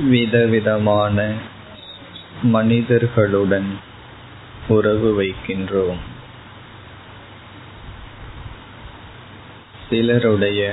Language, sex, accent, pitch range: Tamil, male, native, 100-115 Hz